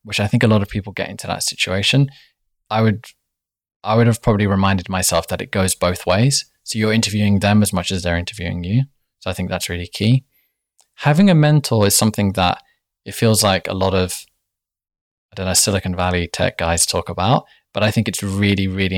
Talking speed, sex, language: 210 wpm, male, English